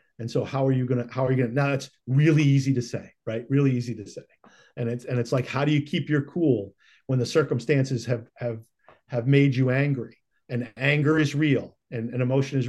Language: English